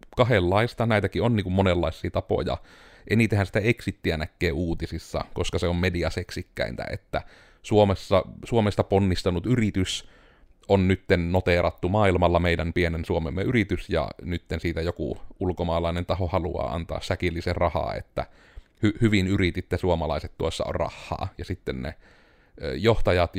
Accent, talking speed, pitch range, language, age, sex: native, 130 wpm, 85-100 Hz, Finnish, 30-49, male